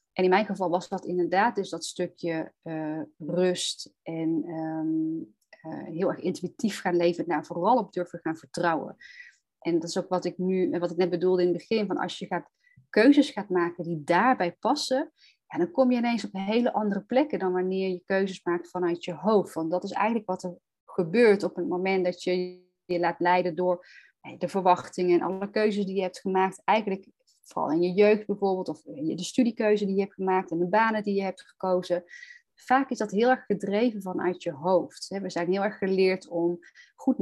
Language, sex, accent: Dutch, female, Dutch